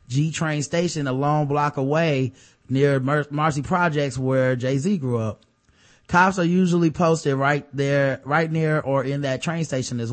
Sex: male